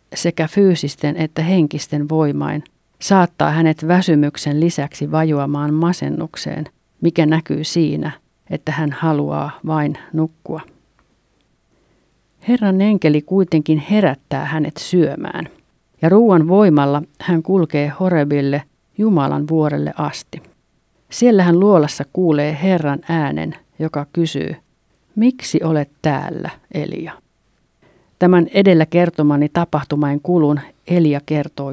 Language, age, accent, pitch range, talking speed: Finnish, 50-69, native, 150-180 Hz, 100 wpm